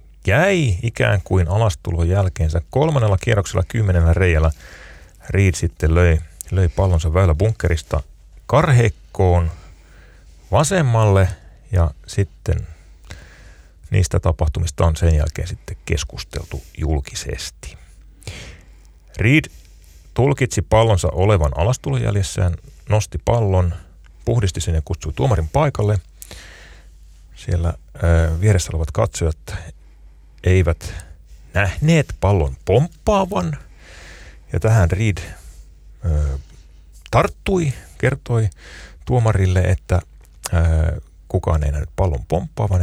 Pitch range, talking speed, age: 80-100 Hz, 90 wpm, 30-49